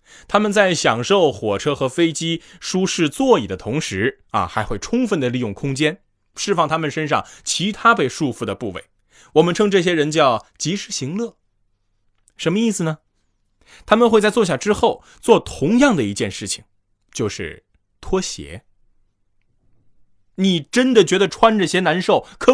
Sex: male